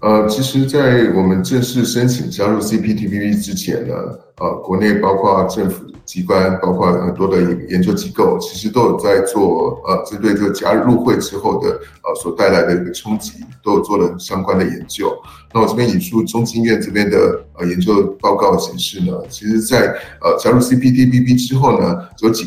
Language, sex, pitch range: Chinese, male, 100-135 Hz